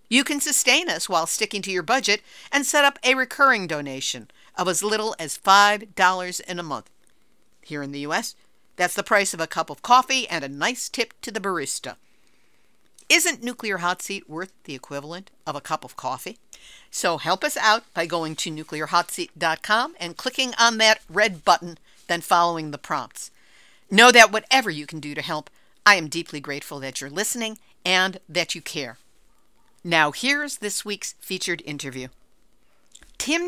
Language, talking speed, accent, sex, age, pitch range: English, 175 wpm, American, female, 50-69, 165-225 Hz